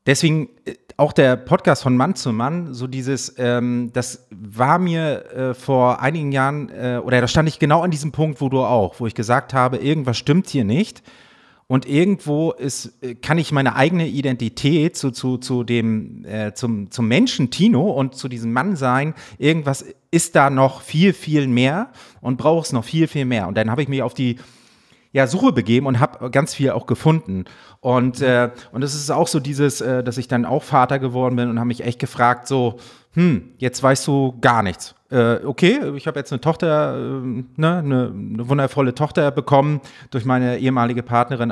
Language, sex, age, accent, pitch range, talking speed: German, male, 30-49, German, 120-145 Hz, 195 wpm